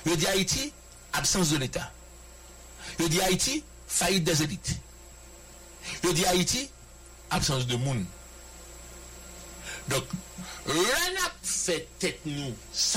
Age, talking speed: 60-79, 105 wpm